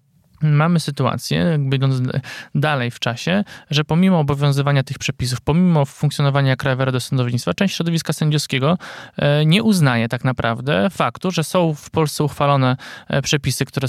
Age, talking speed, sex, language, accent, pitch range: 20-39, 140 wpm, male, Polish, native, 130-155 Hz